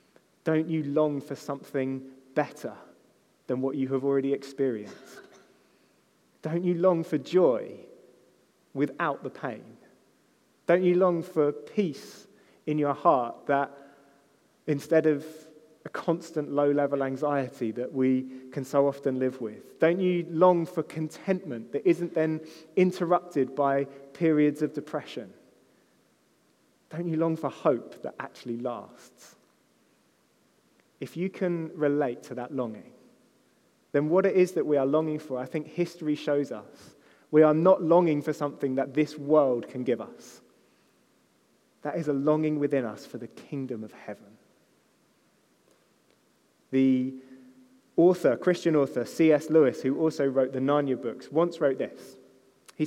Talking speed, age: 140 wpm, 30-49